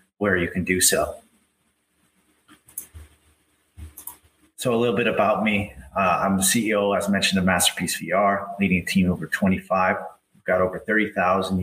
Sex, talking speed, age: male, 150 wpm, 30-49